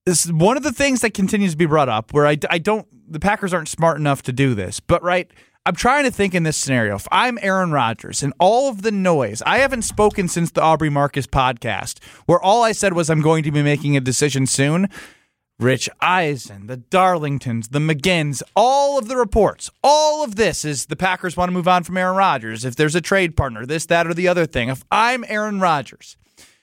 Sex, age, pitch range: male, 30-49, 155-220 Hz